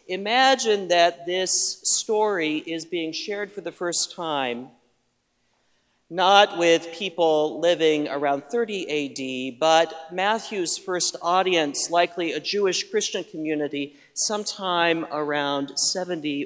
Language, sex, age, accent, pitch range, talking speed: English, male, 40-59, American, 140-185 Hz, 110 wpm